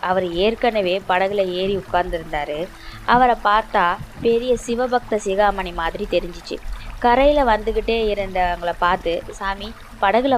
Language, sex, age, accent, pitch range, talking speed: Tamil, female, 20-39, native, 180-220 Hz, 105 wpm